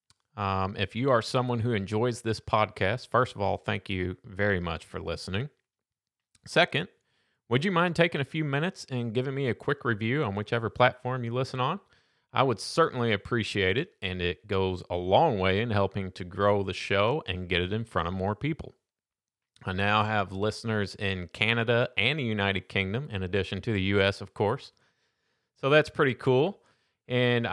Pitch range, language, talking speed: 100-125 Hz, English, 185 wpm